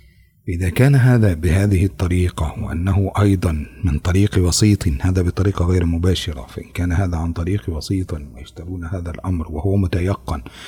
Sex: male